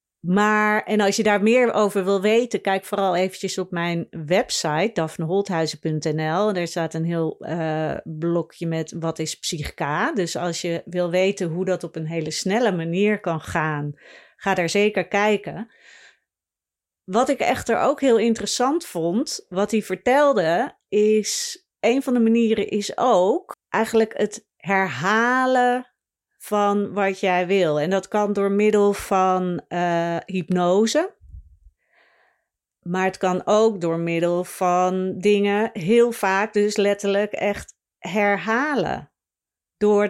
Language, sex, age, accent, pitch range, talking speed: Dutch, female, 40-59, Dutch, 175-210 Hz, 135 wpm